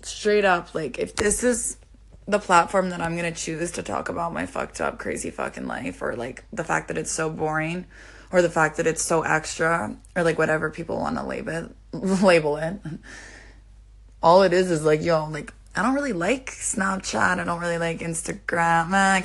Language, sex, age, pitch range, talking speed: English, female, 20-39, 160-210 Hz, 200 wpm